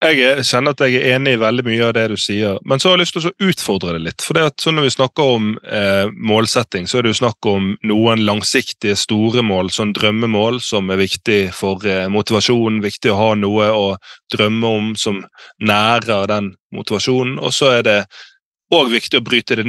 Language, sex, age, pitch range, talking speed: English, male, 20-39, 105-130 Hz, 205 wpm